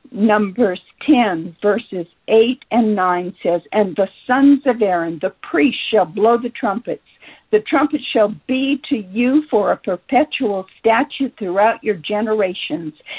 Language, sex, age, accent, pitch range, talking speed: English, female, 50-69, American, 200-255 Hz, 140 wpm